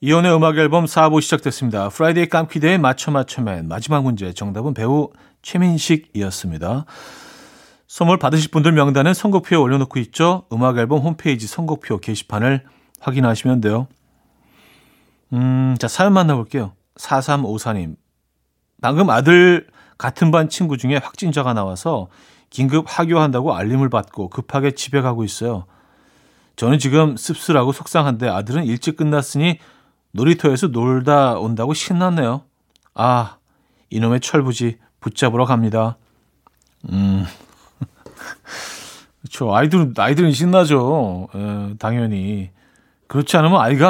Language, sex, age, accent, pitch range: Korean, male, 40-59, native, 115-155 Hz